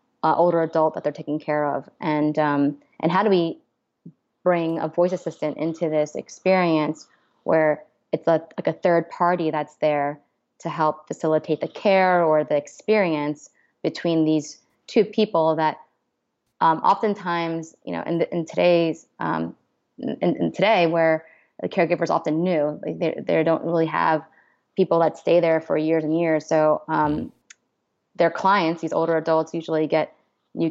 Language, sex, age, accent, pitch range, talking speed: English, female, 20-39, American, 155-175 Hz, 160 wpm